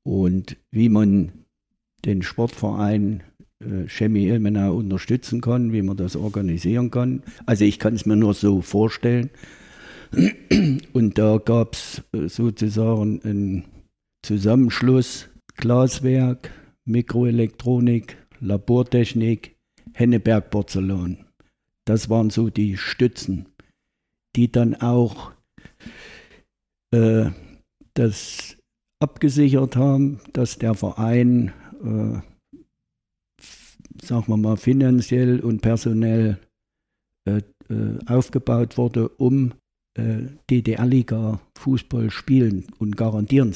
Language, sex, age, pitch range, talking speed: German, male, 60-79, 105-120 Hz, 95 wpm